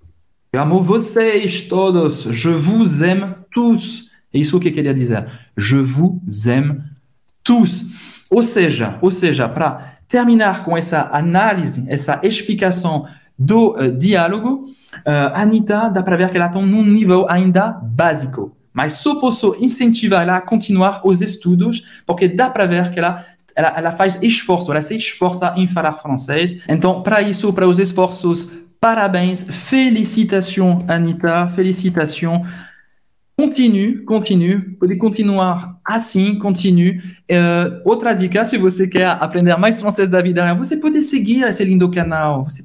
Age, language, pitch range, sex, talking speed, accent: 20-39, Portuguese, 170-205 Hz, male, 145 wpm, French